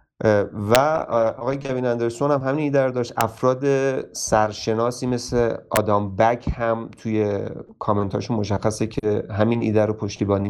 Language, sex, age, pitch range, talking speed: Persian, male, 30-49, 105-130 Hz, 130 wpm